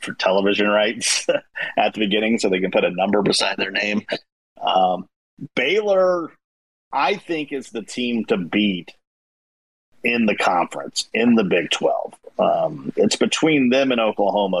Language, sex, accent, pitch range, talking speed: English, male, American, 95-120 Hz, 150 wpm